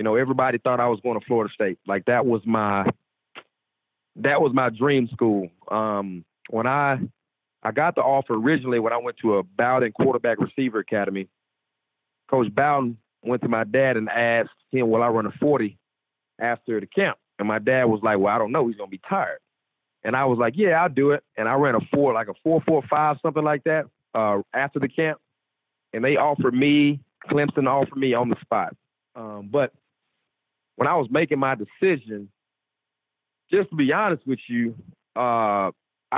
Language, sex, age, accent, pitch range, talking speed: English, male, 30-49, American, 115-150 Hz, 190 wpm